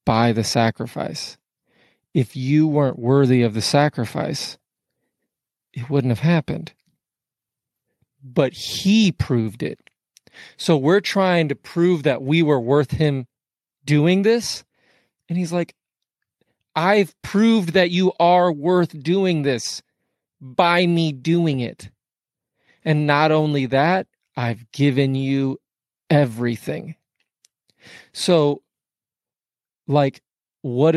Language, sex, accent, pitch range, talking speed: English, male, American, 130-155 Hz, 110 wpm